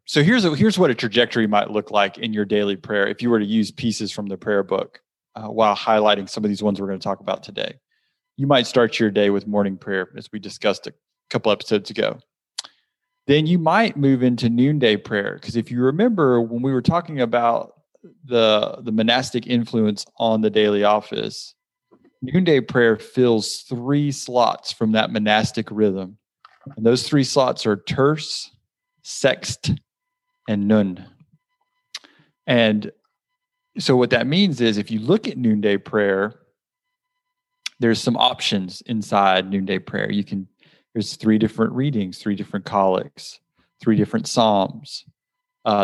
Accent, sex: American, male